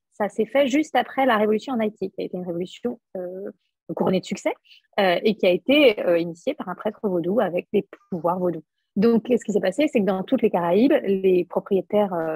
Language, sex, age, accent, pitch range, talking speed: French, female, 30-49, French, 185-235 Hz, 225 wpm